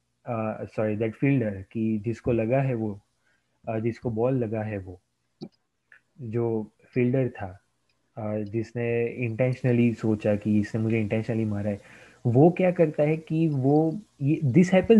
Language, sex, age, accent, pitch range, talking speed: Gujarati, male, 20-39, native, 110-145 Hz, 50 wpm